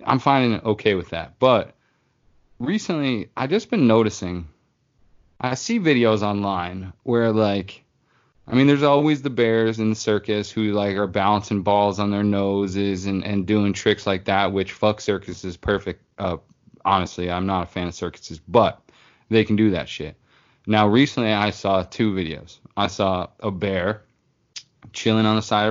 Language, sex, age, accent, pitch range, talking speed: English, male, 20-39, American, 95-115 Hz, 175 wpm